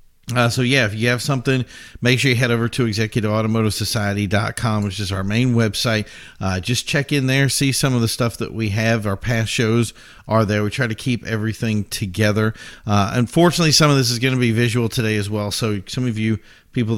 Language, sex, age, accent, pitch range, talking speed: English, male, 40-59, American, 105-120 Hz, 215 wpm